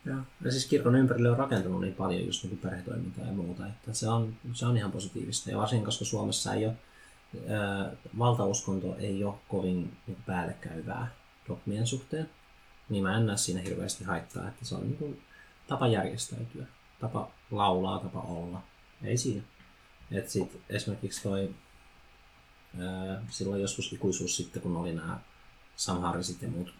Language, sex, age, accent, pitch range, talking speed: Finnish, male, 30-49, native, 90-115 Hz, 150 wpm